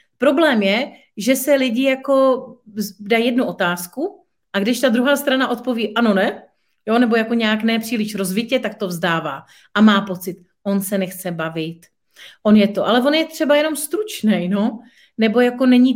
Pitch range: 210-260 Hz